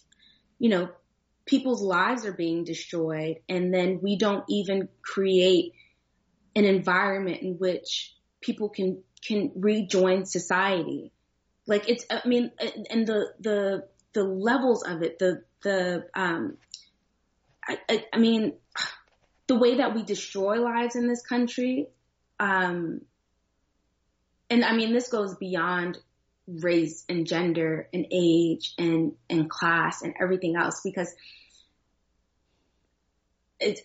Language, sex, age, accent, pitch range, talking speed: English, female, 20-39, American, 165-205 Hz, 120 wpm